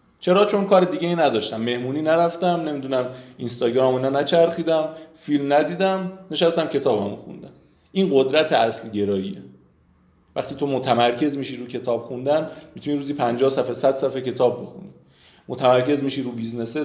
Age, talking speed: 30-49, 145 wpm